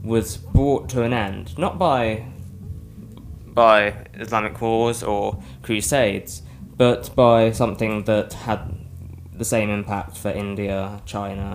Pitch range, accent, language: 95-115 Hz, British, English